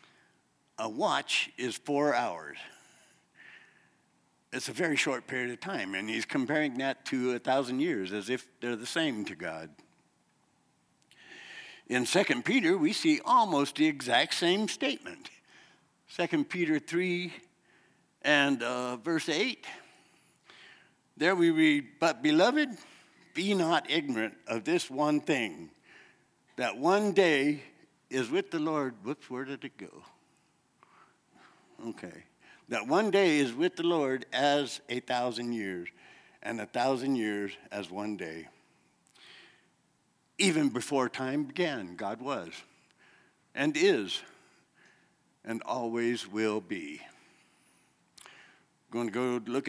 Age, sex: 60-79, male